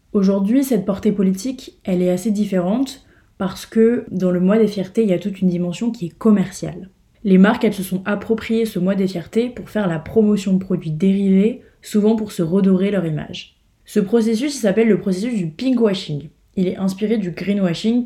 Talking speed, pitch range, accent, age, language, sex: 195 wpm, 180-220 Hz, French, 20-39, French, female